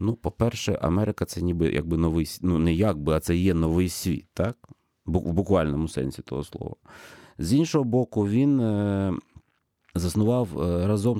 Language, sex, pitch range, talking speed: Ukrainian, male, 90-110 Hz, 115 wpm